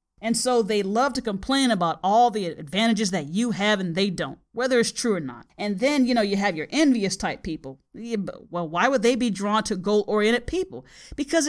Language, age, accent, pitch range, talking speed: English, 40-59, American, 190-245 Hz, 220 wpm